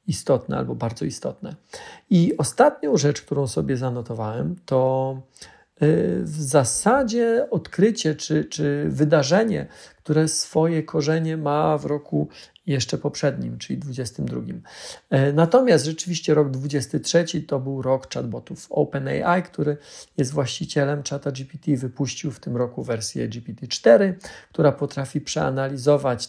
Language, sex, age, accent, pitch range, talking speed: Polish, male, 40-59, native, 135-170 Hz, 110 wpm